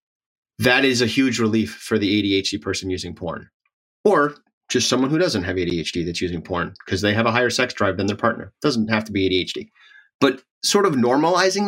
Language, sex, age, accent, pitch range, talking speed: English, male, 30-49, American, 100-125 Hz, 210 wpm